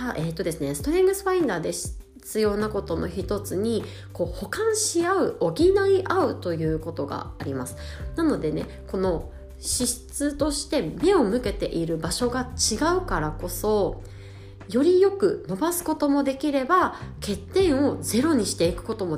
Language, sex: Japanese, female